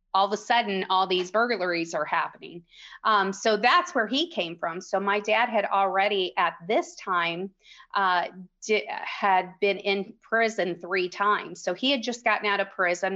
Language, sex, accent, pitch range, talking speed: English, female, American, 185-220 Hz, 185 wpm